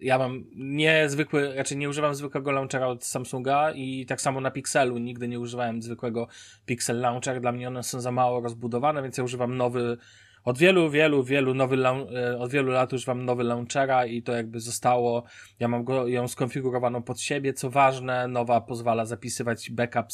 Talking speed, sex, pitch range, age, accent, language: 180 wpm, male, 115-135 Hz, 20-39, native, Polish